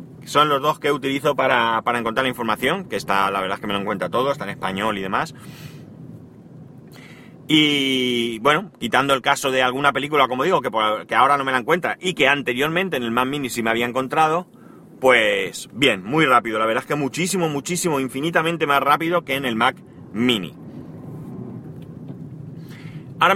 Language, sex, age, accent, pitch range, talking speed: Spanish, male, 30-49, Spanish, 125-160 Hz, 185 wpm